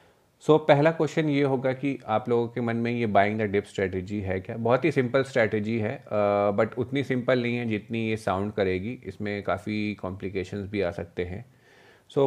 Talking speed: 200 wpm